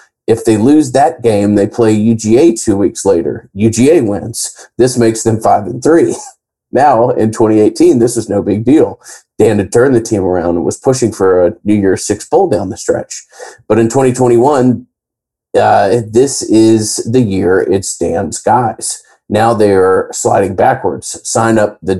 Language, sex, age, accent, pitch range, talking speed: English, male, 40-59, American, 105-120 Hz, 170 wpm